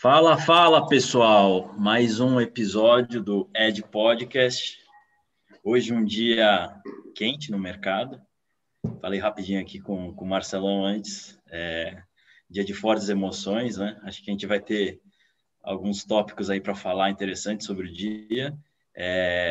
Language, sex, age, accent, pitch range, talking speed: Portuguese, male, 20-39, Brazilian, 100-120 Hz, 140 wpm